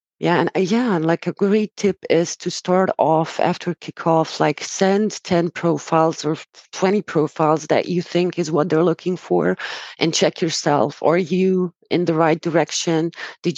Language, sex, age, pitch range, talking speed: Hebrew, female, 30-49, 155-185 Hz, 170 wpm